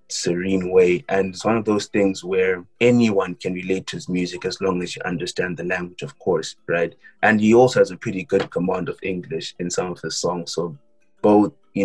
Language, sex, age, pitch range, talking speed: English, male, 20-39, 90-110 Hz, 220 wpm